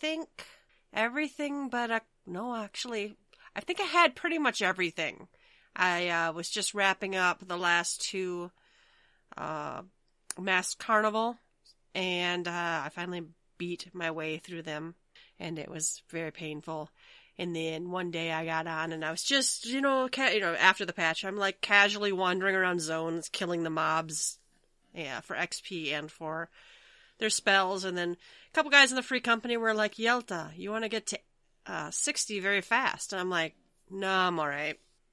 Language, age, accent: English, 30-49, American